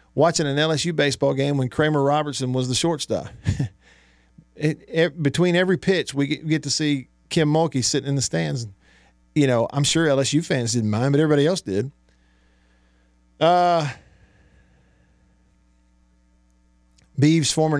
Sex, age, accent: male, 50-69, American